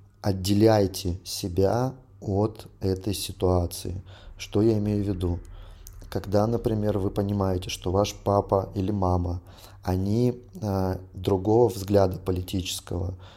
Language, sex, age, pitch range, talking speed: Russian, male, 30-49, 95-110 Hz, 110 wpm